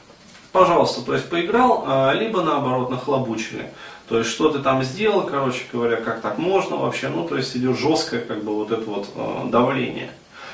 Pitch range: 120-170 Hz